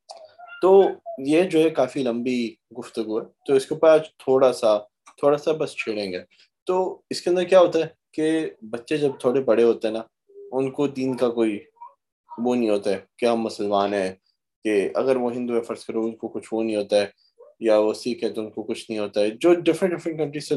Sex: male